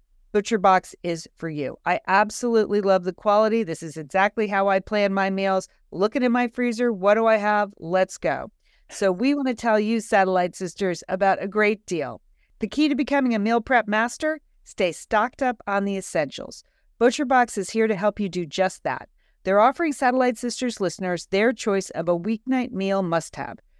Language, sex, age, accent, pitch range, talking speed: English, female, 40-59, American, 190-240 Hz, 185 wpm